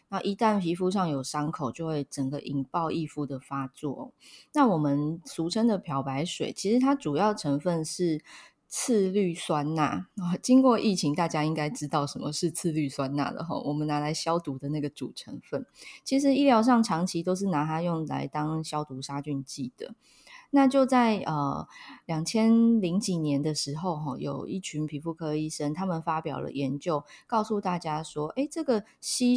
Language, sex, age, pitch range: Chinese, female, 20-39, 150-190 Hz